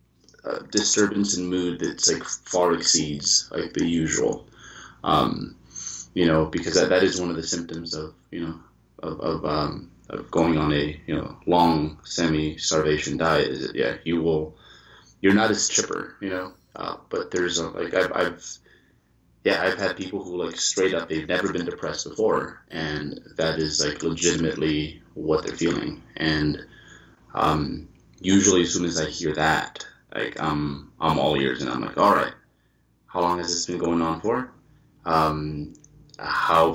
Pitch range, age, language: 80-90 Hz, 30-49, English